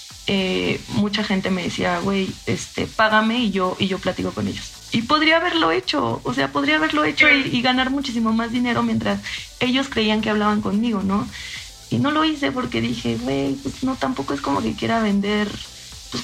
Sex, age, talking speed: female, 20-39, 195 wpm